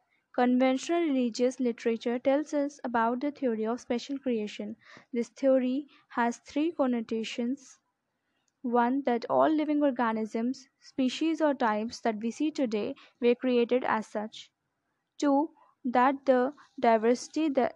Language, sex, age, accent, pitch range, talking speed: English, female, 10-29, Indian, 235-280 Hz, 120 wpm